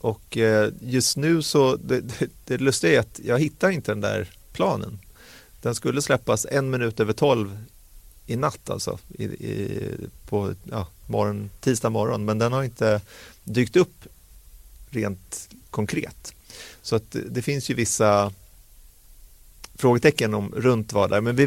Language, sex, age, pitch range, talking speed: Swedish, male, 30-49, 105-125 Hz, 150 wpm